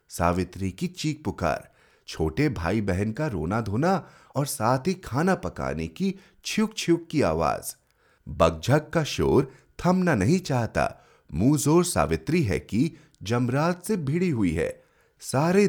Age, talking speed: 30-49, 140 wpm